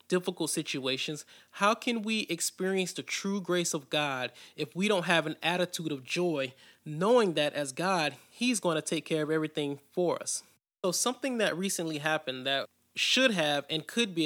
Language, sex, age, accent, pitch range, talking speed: English, male, 30-49, American, 150-190 Hz, 180 wpm